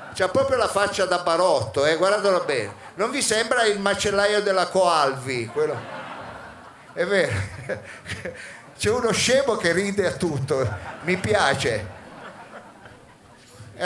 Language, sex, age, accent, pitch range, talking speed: Italian, male, 50-69, native, 160-205 Hz, 125 wpm